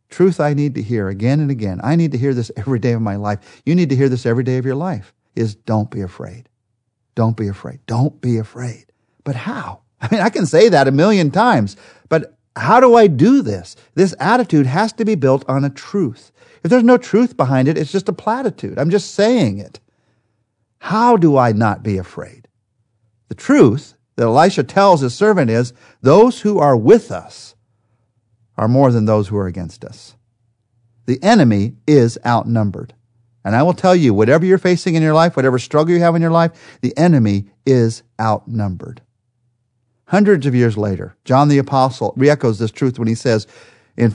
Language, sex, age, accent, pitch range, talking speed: English, male, 50-69, American, 115-155 Hz, 195 wpm